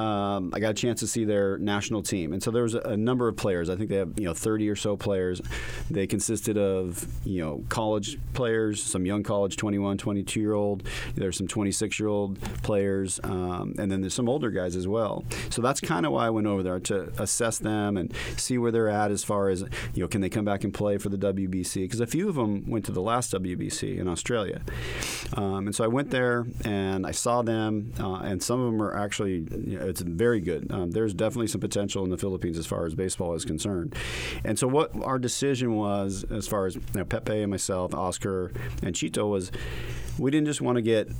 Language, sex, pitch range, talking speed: English, male, 95-110 Hz, 230 wpm